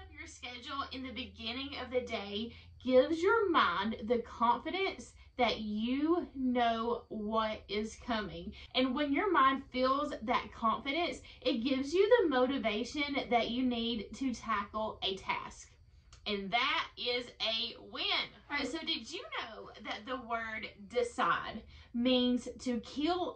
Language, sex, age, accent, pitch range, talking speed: English, female, 20-39, American, 235-285 Hz, 140 wpm